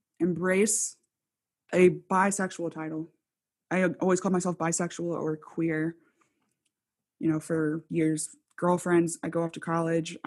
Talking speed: 125 wpm